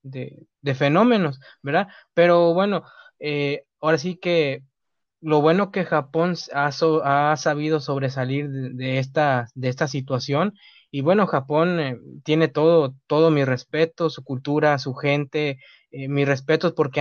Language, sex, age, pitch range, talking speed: Spanish, male, 20-39, 135-165 Hz, 150 wpm